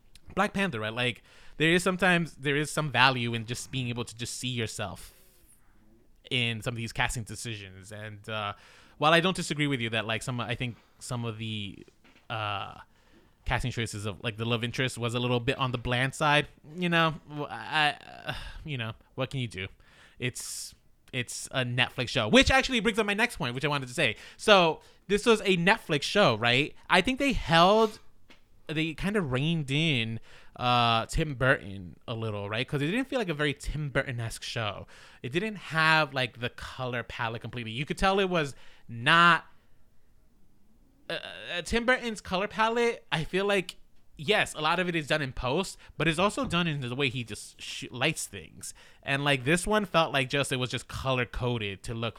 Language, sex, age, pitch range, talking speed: English, male, 20-39, 115-160 Hz, 195 wpm